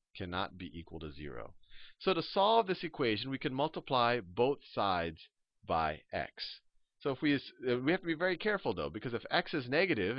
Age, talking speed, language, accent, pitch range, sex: 40-59, 195 wpm, English, American, 105-150 Hz, male